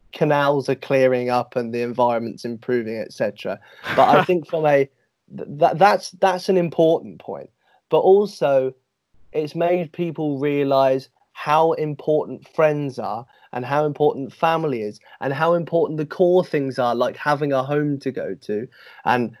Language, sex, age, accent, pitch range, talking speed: English, male, 30-49, British, 130-160 Hz, 155 wpm